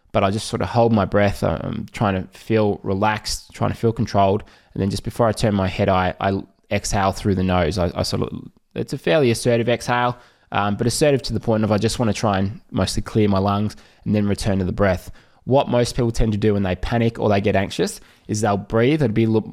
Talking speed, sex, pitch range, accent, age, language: 250 wpm, male, 100-115 Hz, Australian, 20-39, English